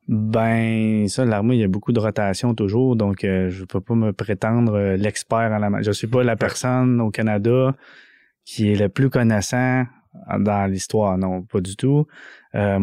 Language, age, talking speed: French, 20-39, 190 wpm